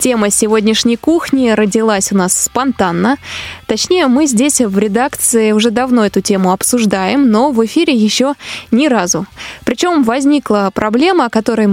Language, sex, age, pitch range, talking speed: Russian, female, 20-39, 200-245 Hz, 145 wpm